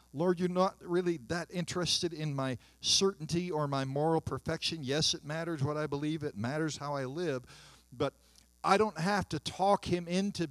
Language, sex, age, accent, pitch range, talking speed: English, male, 50-69, American, 130-175 Hz, 185 wpm